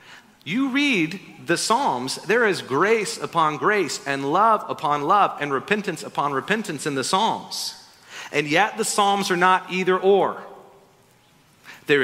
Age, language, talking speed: 40-59, English, 145 wpm